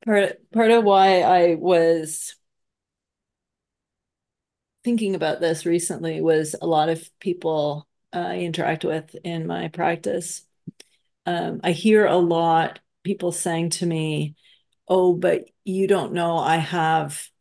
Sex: female